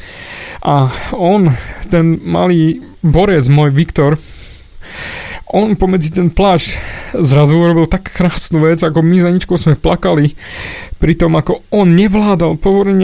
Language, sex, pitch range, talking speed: Slovak, male, 155-185 Hz, 130 wpm